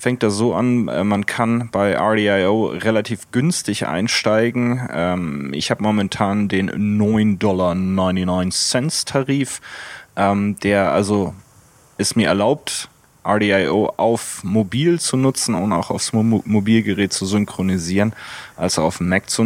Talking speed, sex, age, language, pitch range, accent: 135 wpm, male, 30-49, German, 105-125 Hz, German